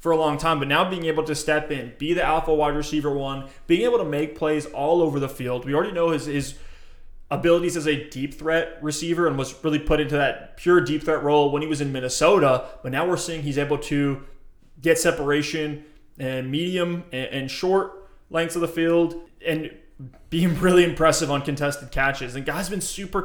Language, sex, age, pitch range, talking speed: English, male, 20-39, 140-160 Hz, 210 wpm